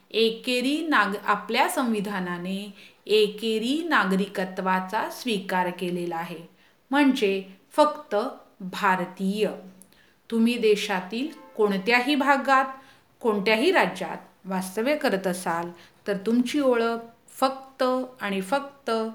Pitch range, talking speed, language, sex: 190-265 Hz, 60 wpm, Hindi, female